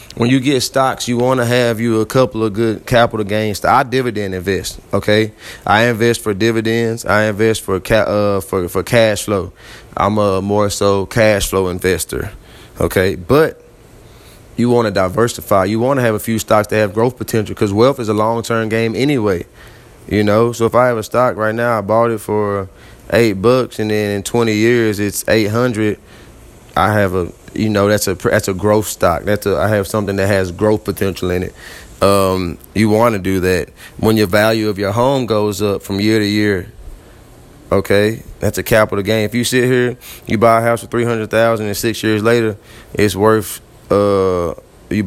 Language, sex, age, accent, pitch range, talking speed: English, male, 20-39, American, 100-115 Hz, 205 wpm